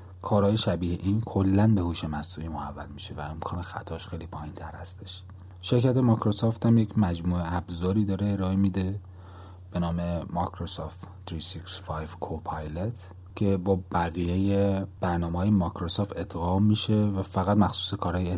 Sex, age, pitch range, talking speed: male, 40-59, 80-95 Hz, 130 wpm